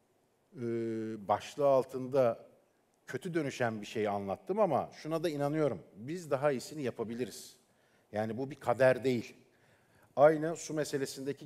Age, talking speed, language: 50-69, 125 wpm, Turkish